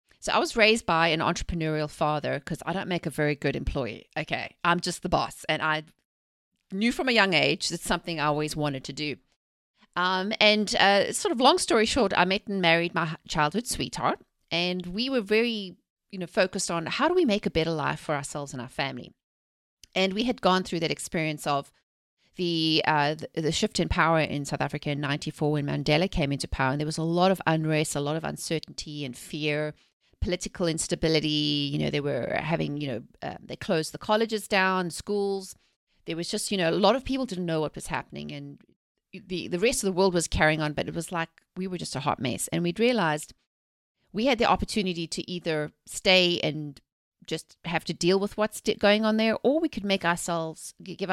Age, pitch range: 30-49, 150-195 Hz